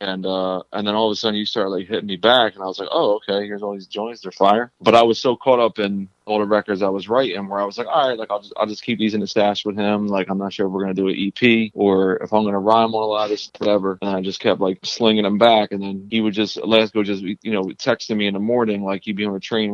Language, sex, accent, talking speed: English, male, American, 320 wpm